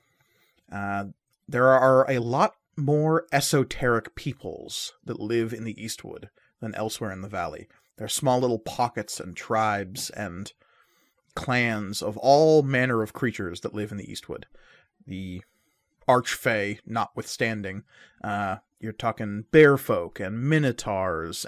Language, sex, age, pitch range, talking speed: English, male, 30-49, 105-130 Hz, 130 wpm